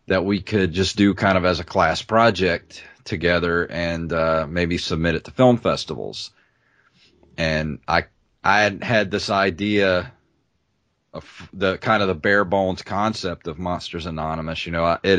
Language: English